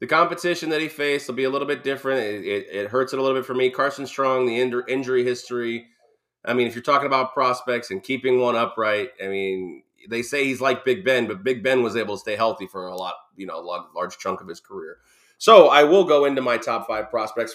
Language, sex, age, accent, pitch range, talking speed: English, male, 30-49, American, 115-140 Hz, 255 wpm